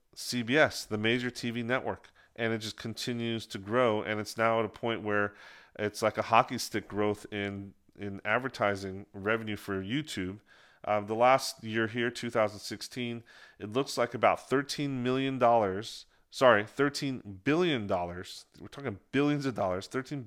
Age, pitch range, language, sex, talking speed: 40-59, 105-135 Hz, English, male, 165 wpm